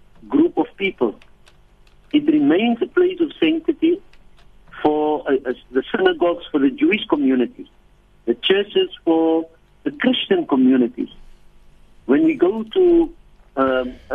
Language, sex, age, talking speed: English, male, 60-79, 125 wpm